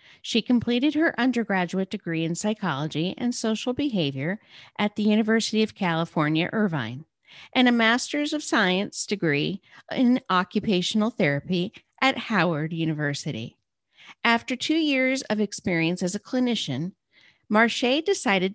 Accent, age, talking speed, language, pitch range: American, 40-59, 125 wpm, English, 165-230 Hz